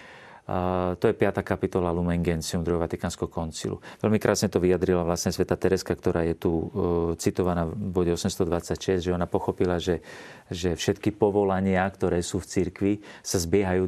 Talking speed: 160 wpm